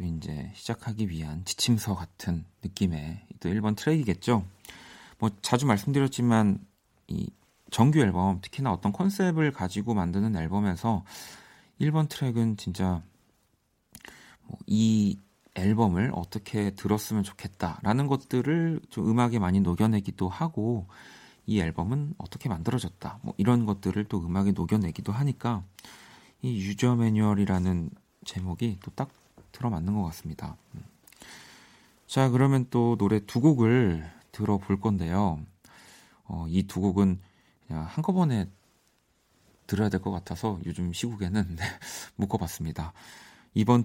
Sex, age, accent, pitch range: male, 40-59, native, 95-125 Hz